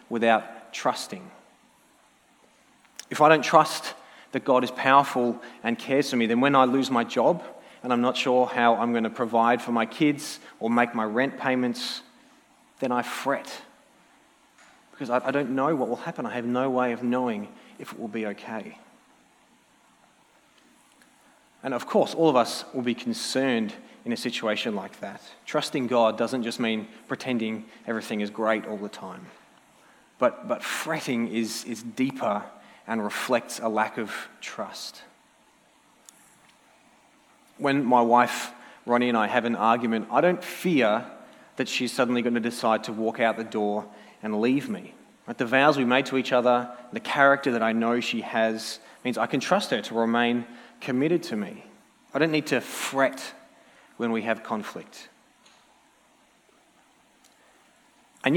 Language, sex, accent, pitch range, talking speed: English, male, Australian, 115-140 Hz, 160 wpm